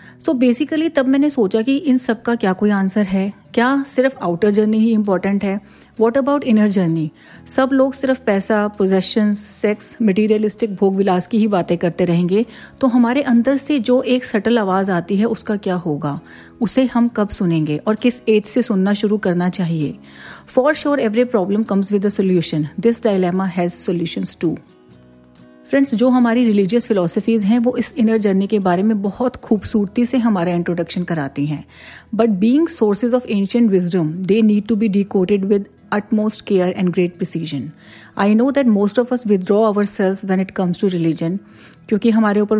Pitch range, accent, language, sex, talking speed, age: 185-230 Hz, native, Hindi, female, 185 wpm, 40-59